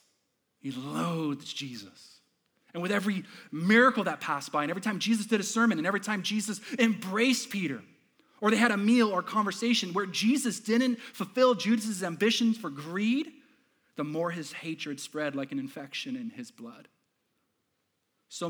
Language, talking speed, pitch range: English, 160 wpm, 150-220 Hz